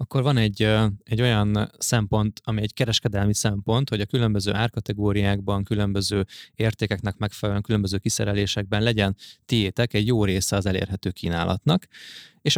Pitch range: 100-115 Hz